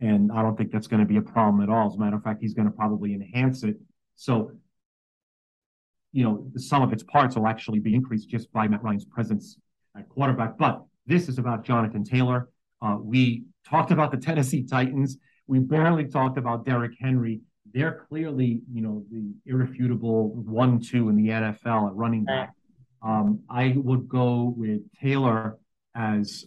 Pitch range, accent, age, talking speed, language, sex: 110-130 Hz, American, 40-59, 180 wpm, English, male